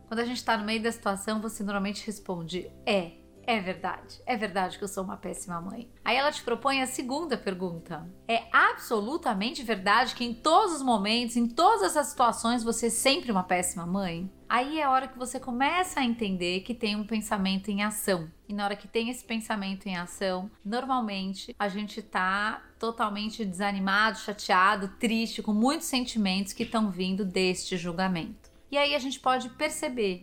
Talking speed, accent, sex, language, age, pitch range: 185 wpm, Brazilian, female, Portuguese, 30-49, 190-235 Hz